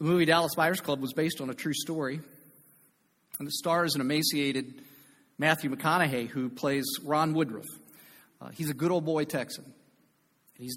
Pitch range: 135-160 Hz